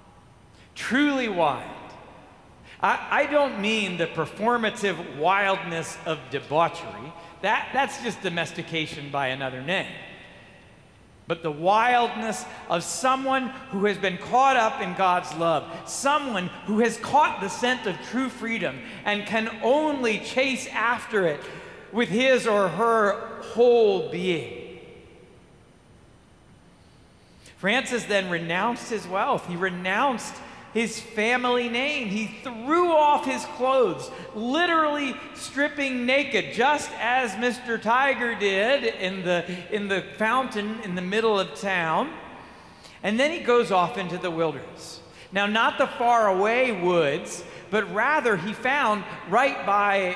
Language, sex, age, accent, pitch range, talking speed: English, male, 50-69, American, 180-250 Hz, 125 wpm